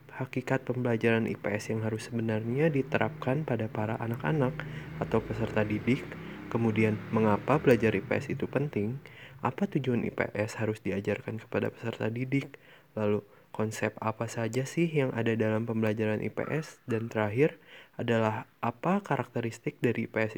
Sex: male